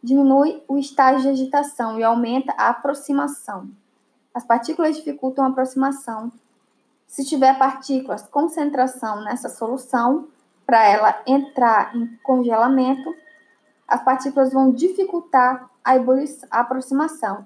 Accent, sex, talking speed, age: Brazilian, female, 115 wpm, 10-29